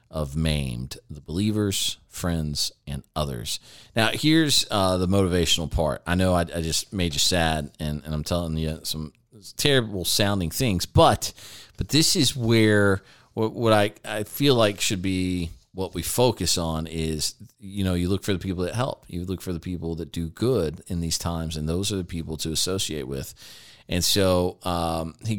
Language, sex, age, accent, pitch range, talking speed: English, male, 40-59, American, 85-110 Hz, 190 wpm